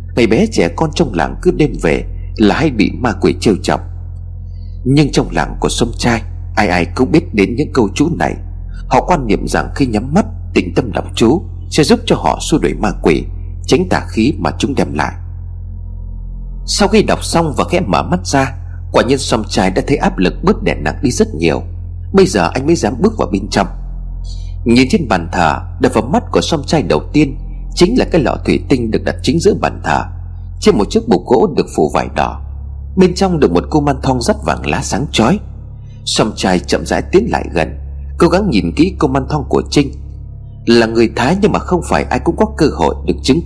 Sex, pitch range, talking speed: male, 85-115 Hz, 225 wpm